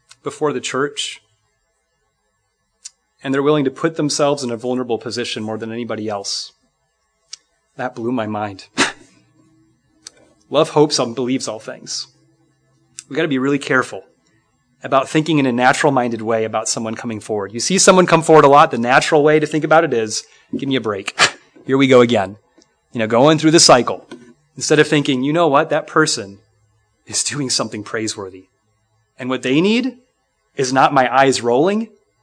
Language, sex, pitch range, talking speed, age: English, male, 115-150 Hz, 175 wpm, 30-49